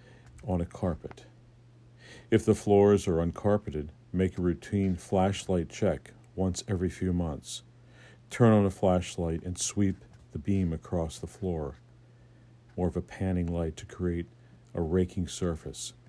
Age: 50-69